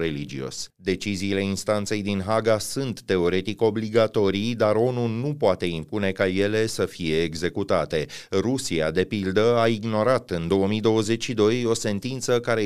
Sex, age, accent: male, 30-49, native